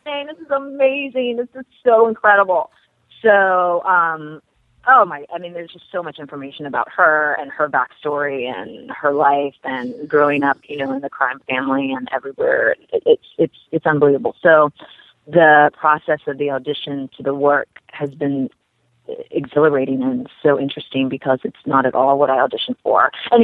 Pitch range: 135-180 Hz